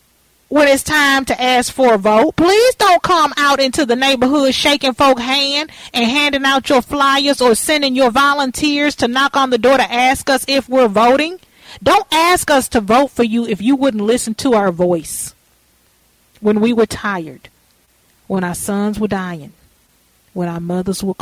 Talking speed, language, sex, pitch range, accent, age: 185 wpm, English, female, 180-275 Hz, American, 40-59